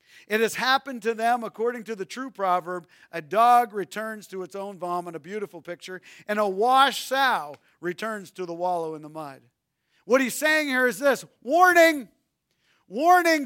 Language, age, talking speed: English, 50-69, 175 wpm